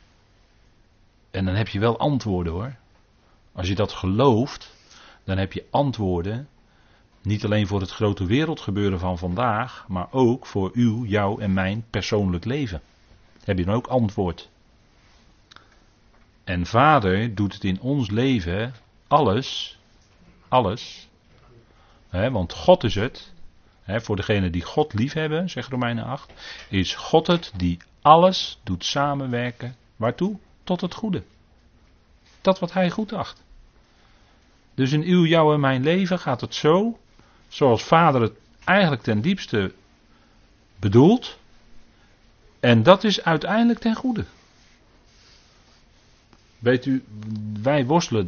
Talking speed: 130 wpm